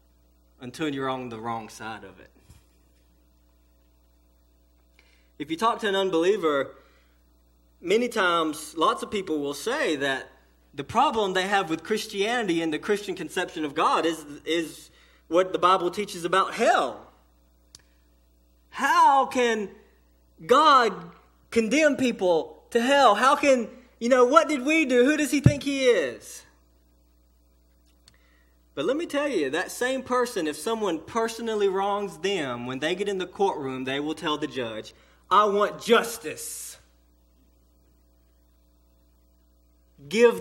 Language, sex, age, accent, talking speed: English, male, 20-39, American, 135 wpm